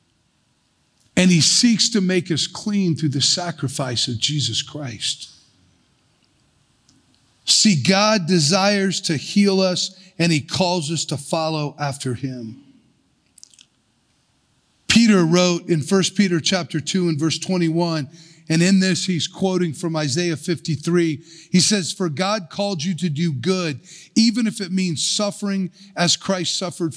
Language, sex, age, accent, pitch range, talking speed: English, male, 50-69, American, 165-220 Hz, 140 wpm